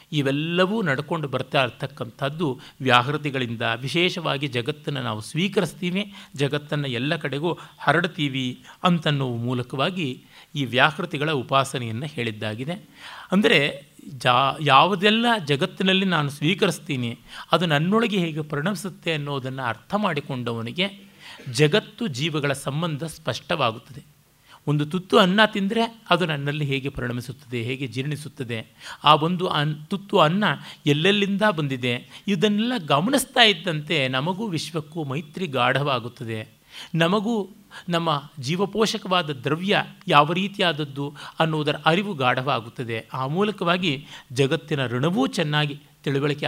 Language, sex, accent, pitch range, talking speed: Kannada, male, native, 130-175 Hz, 95 wpm